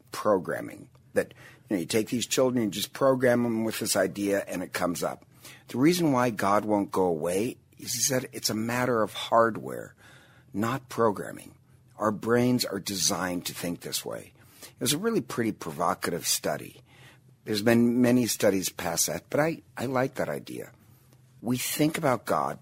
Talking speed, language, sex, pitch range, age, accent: 175 wpm, English, male, 100-130 Hz, 60-79, American